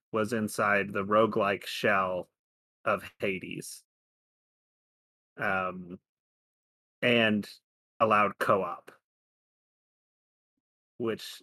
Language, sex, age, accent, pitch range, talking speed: English, male, 30-49, American, 100-115 Hz, 65 wpm